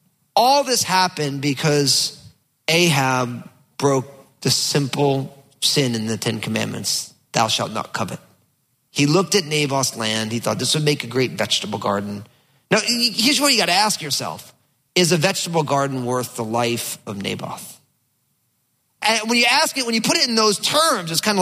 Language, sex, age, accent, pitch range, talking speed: English, male, 30-49, American, 125-170 Hz, 175 wpm